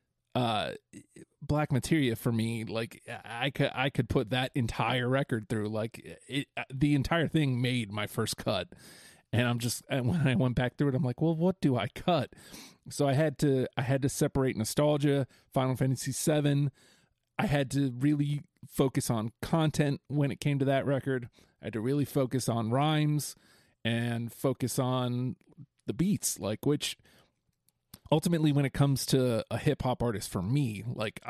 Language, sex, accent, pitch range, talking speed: English, male, American, 120-145 Hz, 180 wpm